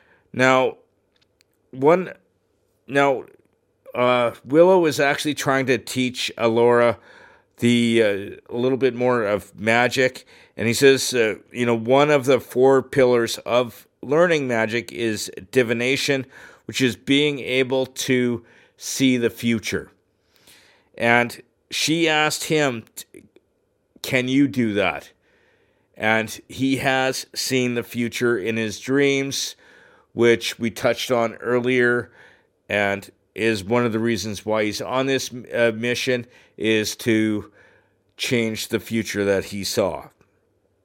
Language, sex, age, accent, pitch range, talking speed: English, male, 50-69, American, 115-135 Hz, 125 wpm